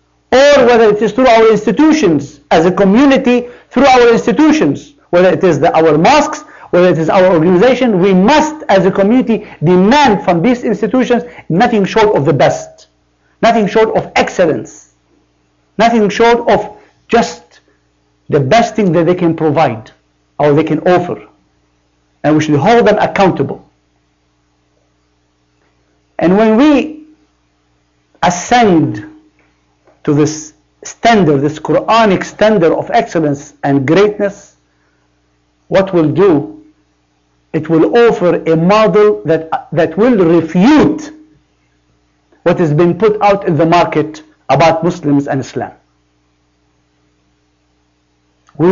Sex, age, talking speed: male, 50-69, 125 wpm